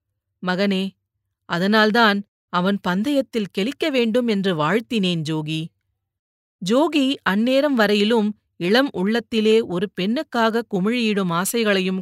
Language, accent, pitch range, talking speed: Tamil, native, 180-230 Hz, 90 wpm